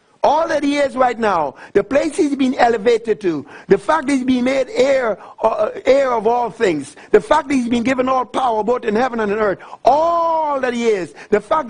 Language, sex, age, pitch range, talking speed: English, male, 60-79, 230-300 Hz, 220 wpm